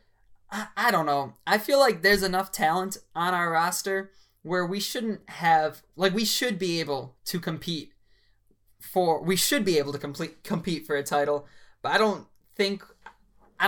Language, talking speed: English, 165 wpm